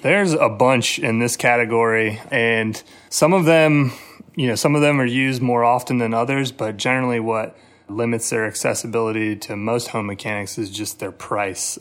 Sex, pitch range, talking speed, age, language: male, 110-120 Hz, 180 wpm, 30-49, English